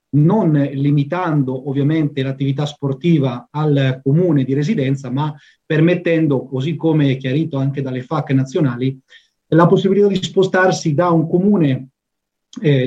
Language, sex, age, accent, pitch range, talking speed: Italian, male, 30-49, native, 140-185 Hz, 125 wpm